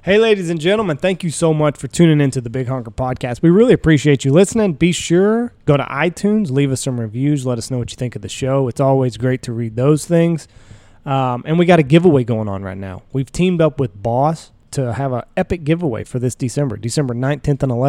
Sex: male